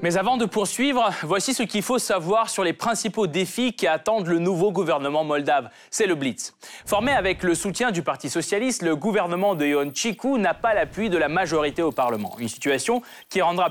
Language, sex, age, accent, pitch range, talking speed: French, male, 20-39, French, 160-225 Hz, 200 wpm